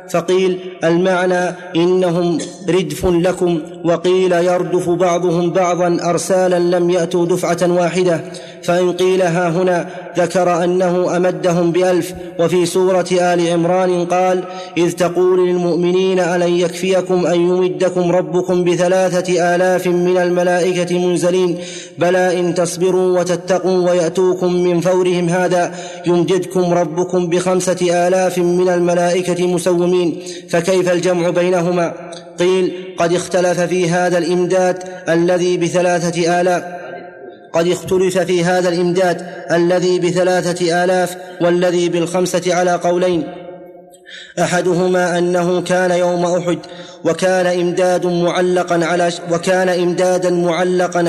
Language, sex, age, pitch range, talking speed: Arabic, male, 30-49, 175-180 Hz, 100 wpm